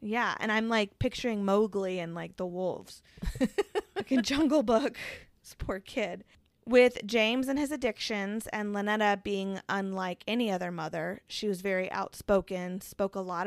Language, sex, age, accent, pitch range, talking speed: English, female, 20-39, American, 190-230 Hz, 160 wpm